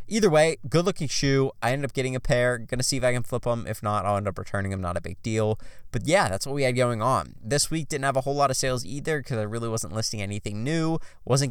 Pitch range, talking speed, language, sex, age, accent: 95-125 Hz, 285 wpm, English, male, 20-39, American